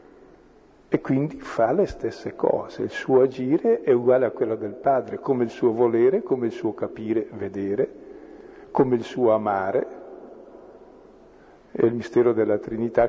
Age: 50-69